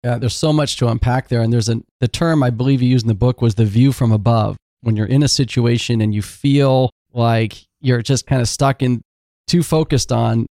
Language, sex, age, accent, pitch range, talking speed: English, male, 40-59, American, 115-130 Hz, 240 wpm